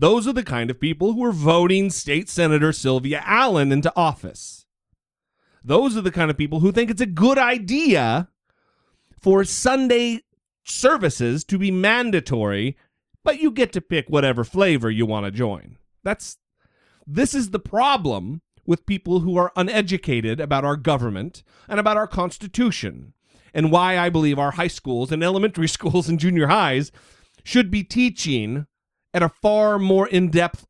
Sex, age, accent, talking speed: male, 40-59, American, 160 wpm